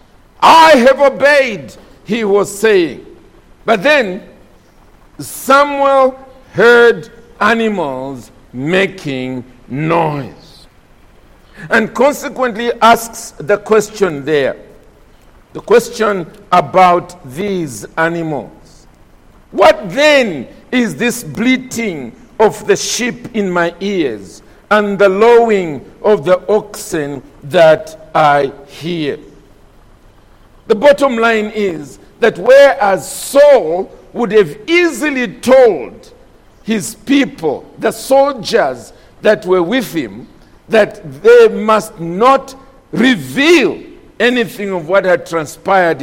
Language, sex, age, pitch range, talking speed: English, male, 50-69, 165-245 Hz, 95 wpm